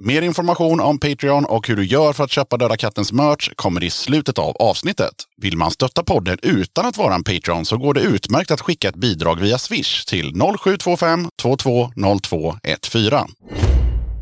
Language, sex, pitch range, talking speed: Swedish, male, 100-145 Hz, 175 wpm